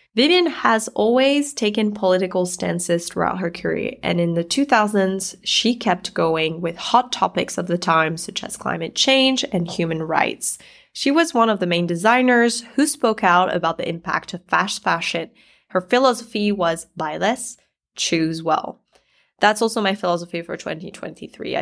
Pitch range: 175-225 Hz